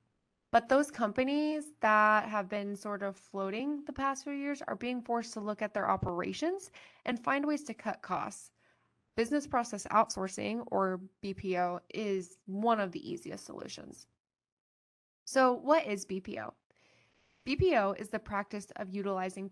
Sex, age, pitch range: female, 10-29, 195-245 Hz